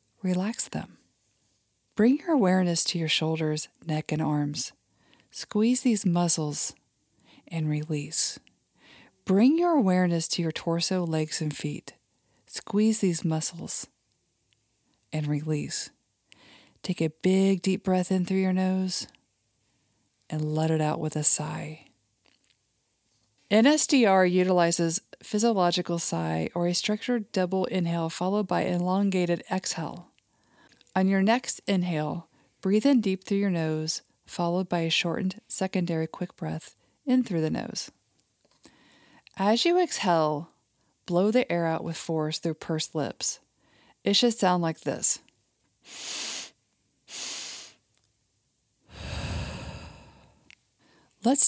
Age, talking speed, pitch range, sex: 40-59, 115 wpm, 155-195 Hz, female